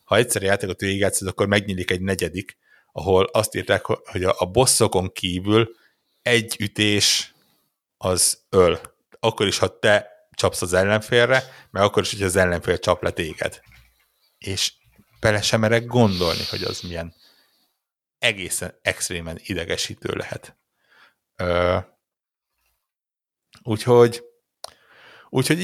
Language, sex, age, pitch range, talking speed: Hungarian, male, 60-79, 95-115 Hz, 110 wpm